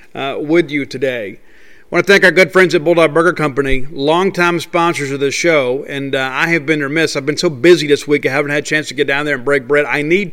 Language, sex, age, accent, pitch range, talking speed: English, male, 50-69, American, 145-175 Hz, 265 wpm